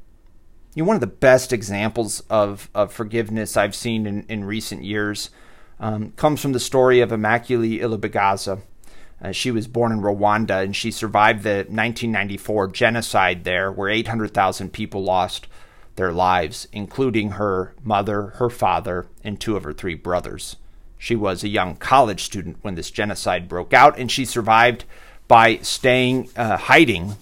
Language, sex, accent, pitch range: English, male, American, 100-125 Hz